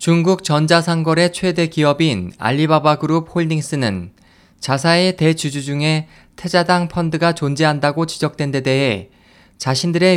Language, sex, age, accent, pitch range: Korean, male, 20-39, native, 135-170 Hz